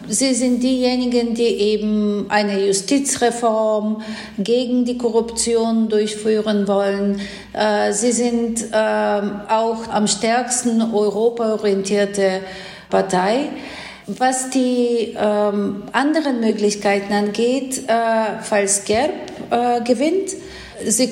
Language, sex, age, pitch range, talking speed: German, female, 50-69, 205-235 Hz, 80 wpm